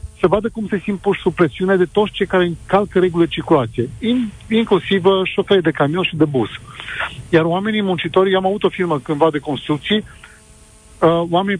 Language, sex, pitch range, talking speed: Romanian, male, 160-190 Hz, 180 wpm